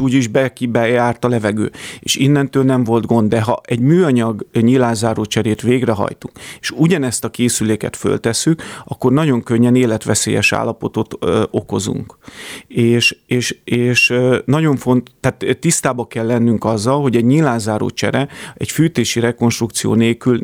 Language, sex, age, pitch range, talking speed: Hungarian, male, 30-49, 110-130 Hz, 130 wpm